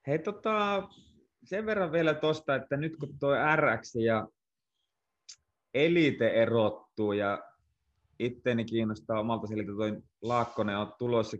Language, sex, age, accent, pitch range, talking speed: Finnish, male, 30-49, native, 100-120 Hz, 120 wpm